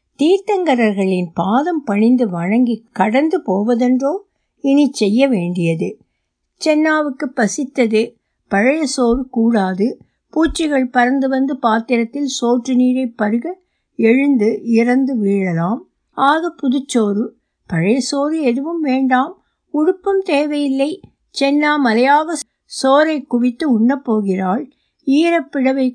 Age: 60-79